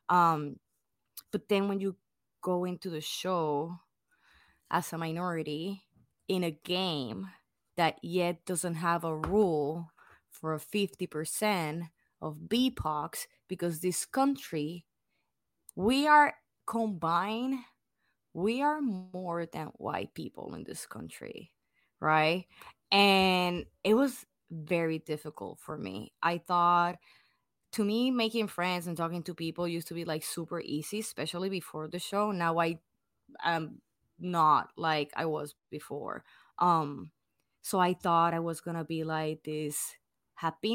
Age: 20-39